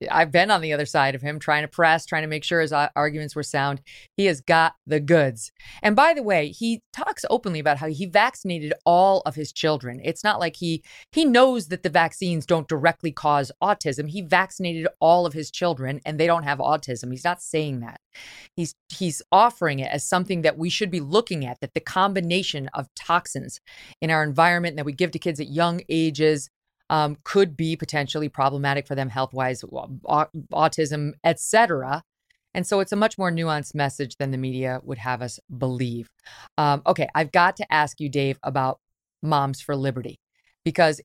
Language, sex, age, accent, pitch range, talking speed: English, female, 30-49, American, 140-180 Hz, 195 wpm